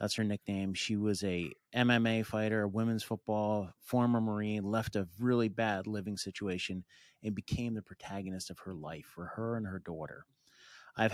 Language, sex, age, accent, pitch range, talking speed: English, male, 30-49, American, 100-120 Hz, 165 wpm